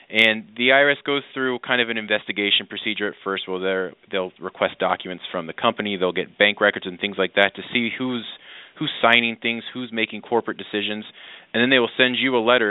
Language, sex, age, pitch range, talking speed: English, male, 30-49, 100-115 Hz, 210 wpm